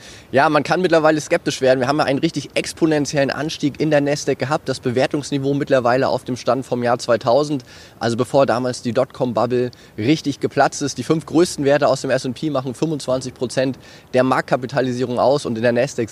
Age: 20-39